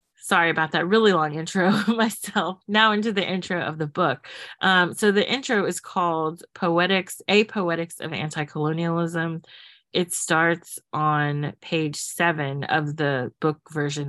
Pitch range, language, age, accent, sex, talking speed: 155-185 Hz, English, 30-49, American, female, 145 wpm